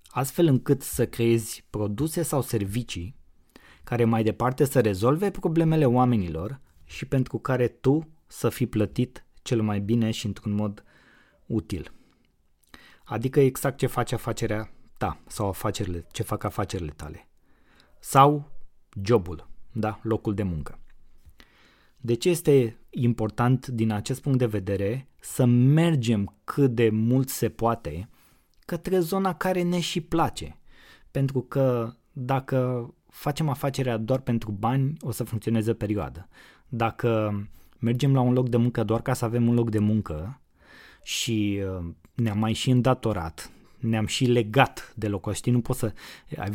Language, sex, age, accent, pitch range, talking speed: Romanian, male, 20-39, native, 105-130 Hz, 140 wpm